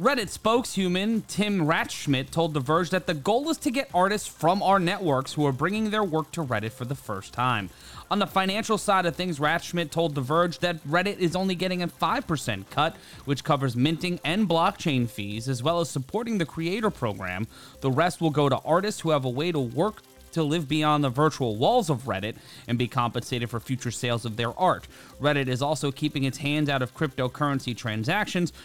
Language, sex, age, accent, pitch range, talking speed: English, male, 30-49, American, 125-185 Hz, 205 wpm